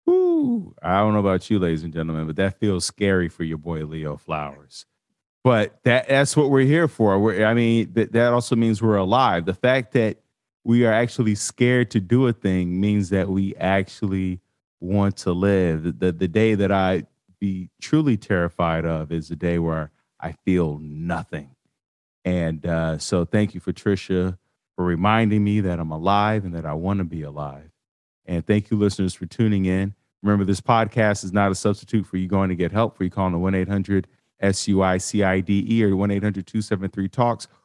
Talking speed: 185 wpm